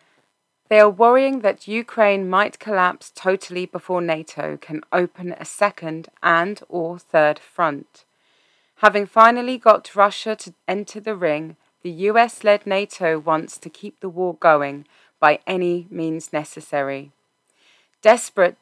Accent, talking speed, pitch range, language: British, 130 wpm, 155-195 Hz, English